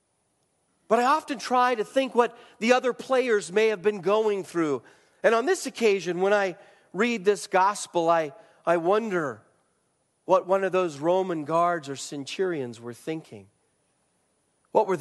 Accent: American